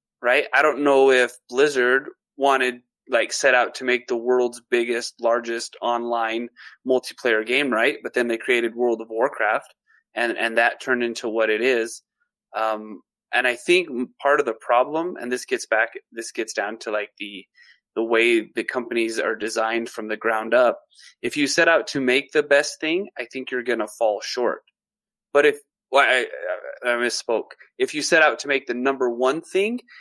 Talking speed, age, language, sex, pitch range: 190 wpm, 20-39, English, male, 115-145 Hz